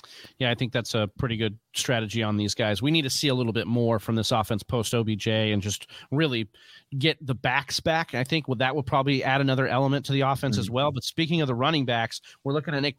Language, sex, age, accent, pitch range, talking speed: English, male, 30-49, American, 125-155 Hz, 255 wpm